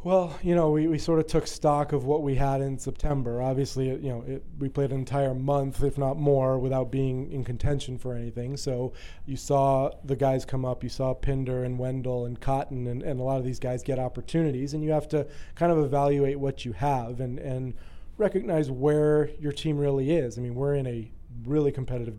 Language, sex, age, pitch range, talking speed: English, male, 30-49, 125-140 Hz, 215 wpm